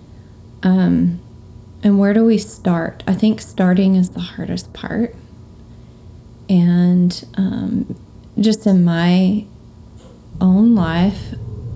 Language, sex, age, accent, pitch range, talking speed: English, female, 20-39, American, 160-190 Hz, 100 wpm